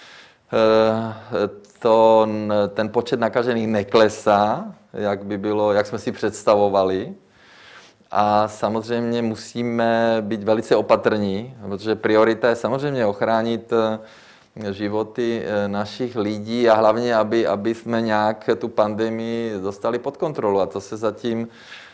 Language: Czech